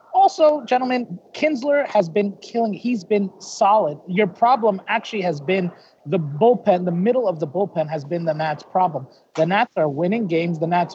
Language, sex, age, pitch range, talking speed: English, male, 30-49, 175-225 Hz, 180 wpm